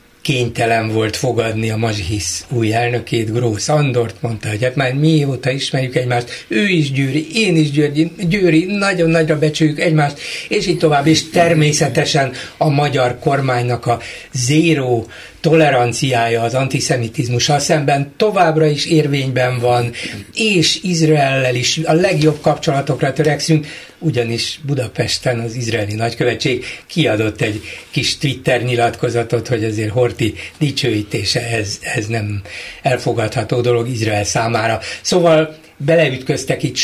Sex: male